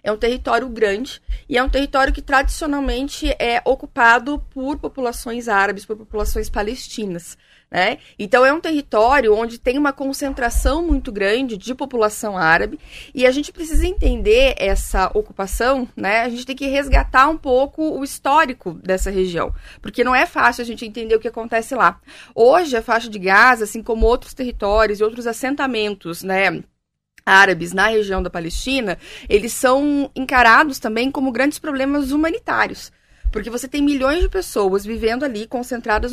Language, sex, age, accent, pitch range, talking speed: Portuguese, female, 30-49, Brazilian, 215-285 Hz, 160 wpm